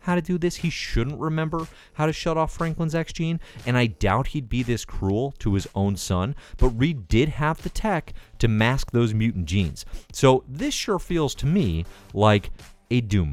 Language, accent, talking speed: English, American, 200 wpm